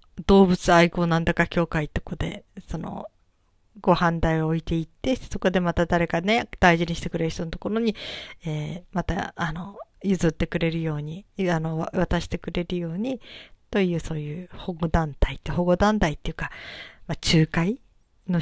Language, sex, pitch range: Japanese, female, 165-215 Hz